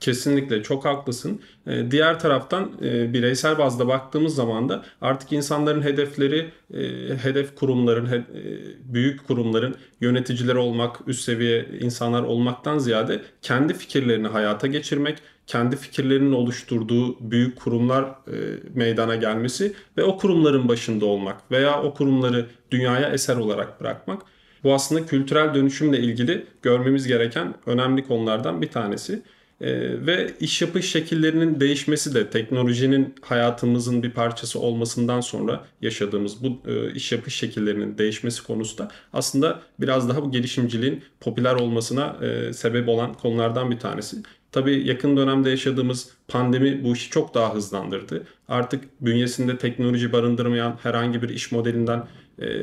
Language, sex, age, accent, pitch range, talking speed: Turkish, male, 40-59, native, 120-135 Hz, 130 wpm